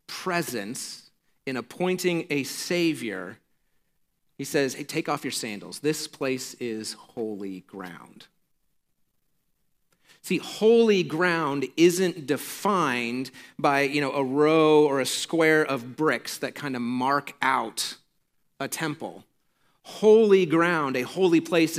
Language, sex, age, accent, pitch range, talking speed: English, male, 40-59, American, 130-165 Hz, 120 wpm